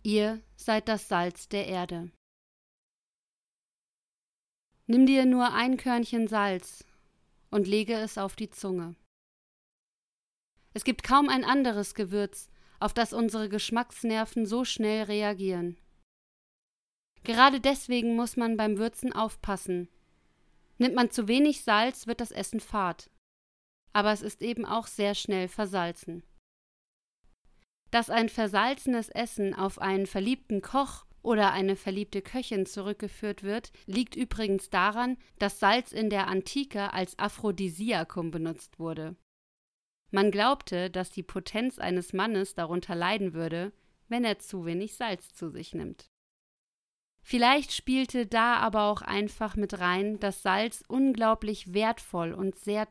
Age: 30-49